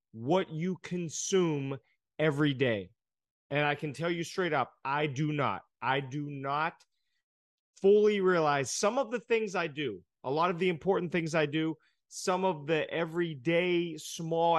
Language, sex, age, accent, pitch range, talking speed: English, male, 30-49, American, 145-185 Hz, 160 wpm